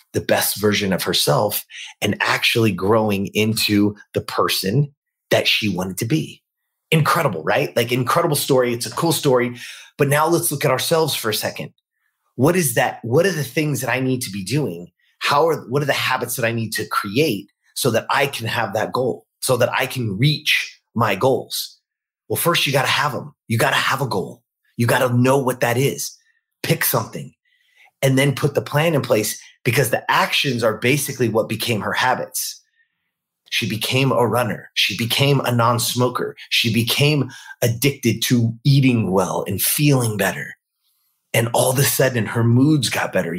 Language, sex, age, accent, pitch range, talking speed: English, male, 30-49, American, 110-145 Hz, 190 wpm